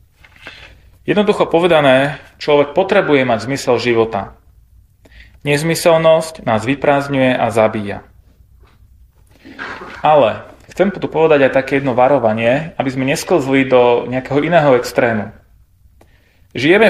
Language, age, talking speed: Slovak, 30-49, 100 wpm